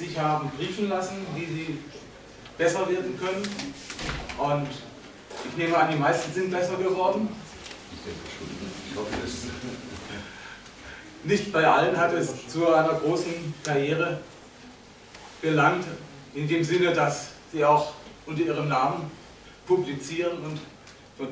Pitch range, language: 140-170 Hz, German